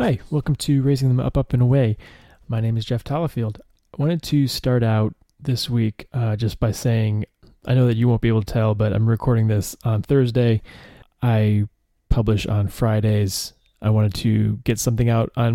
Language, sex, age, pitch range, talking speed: English, male, 20-39, 105-120 Hz, 200 wpm